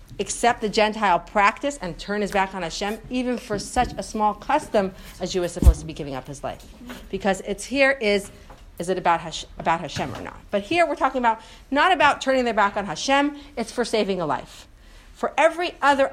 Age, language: 40-59, English